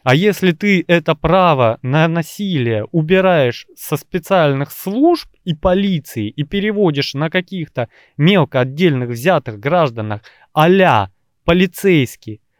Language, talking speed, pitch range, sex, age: Russian, 110 wpm, 130-185 Hz, male, 20-39